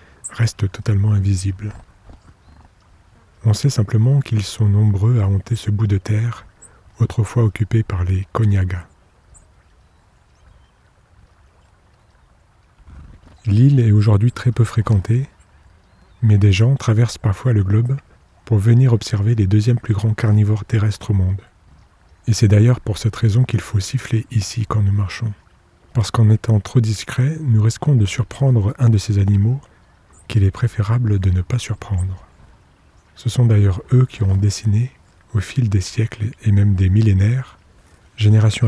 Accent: French